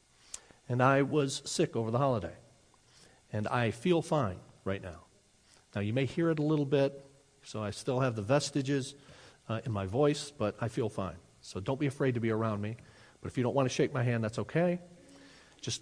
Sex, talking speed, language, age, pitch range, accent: male, 210 wpm, English, 40-59, 120-170 Hz, American